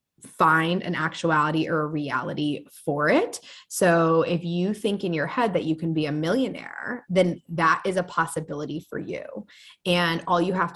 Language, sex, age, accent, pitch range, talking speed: English, female, 20-39, American, 160-185 Hz, 180 wpm